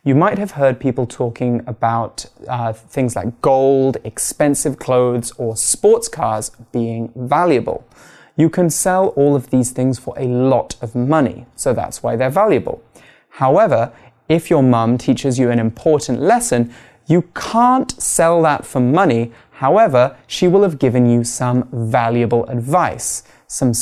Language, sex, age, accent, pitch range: Chinese, male, 20-39, British, 120-150 Hz